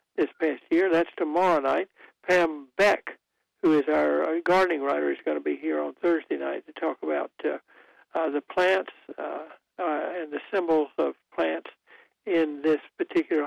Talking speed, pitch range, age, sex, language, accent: 170 wpm, 155-185 Hz, 60-79, male, English, American